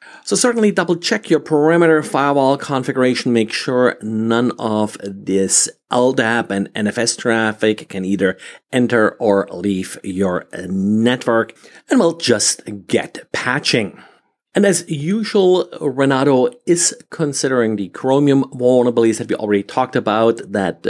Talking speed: 125 wpm